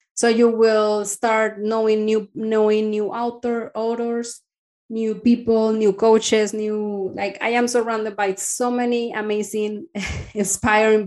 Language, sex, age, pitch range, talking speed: English, female, 20-39, 200-245 Hz, 130 wpm